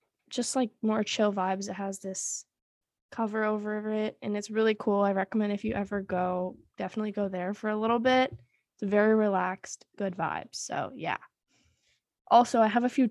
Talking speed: 190 wpm